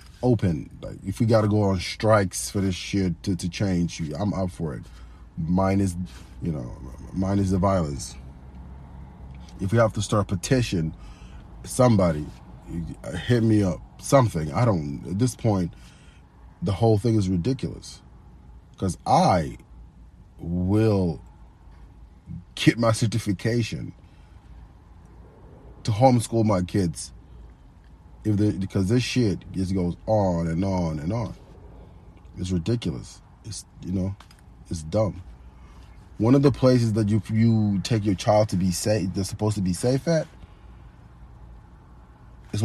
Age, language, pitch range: 30-49, English, 85-105 Hz